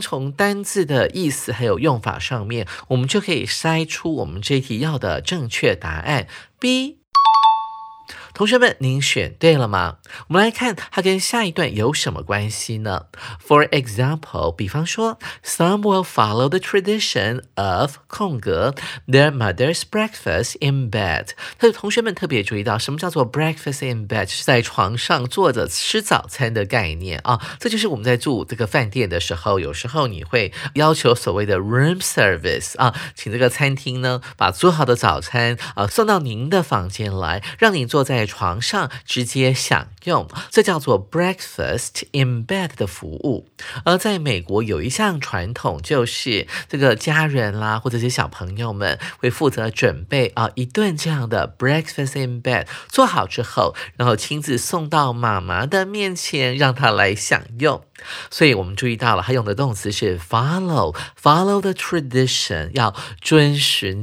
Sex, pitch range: male, 115-170 Hz